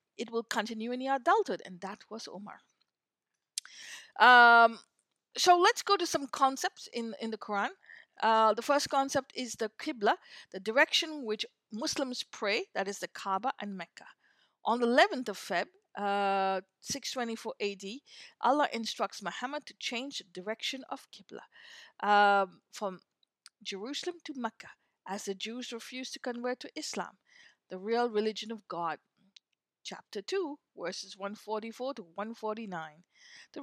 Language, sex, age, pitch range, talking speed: English, female, 50-69, 205-310 Hz, 145 wpm